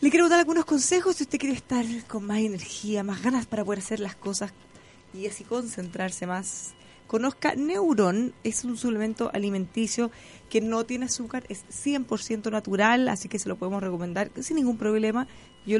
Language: Spanish